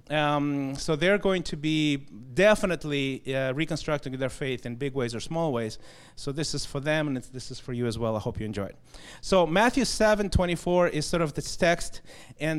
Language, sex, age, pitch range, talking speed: English, male, 30-49, 140-185 Hz, 215 wpm